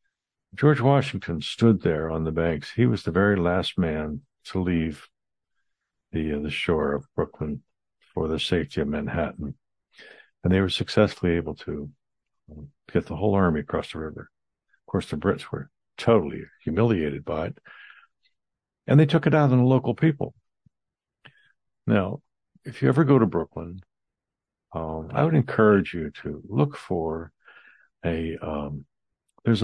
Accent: American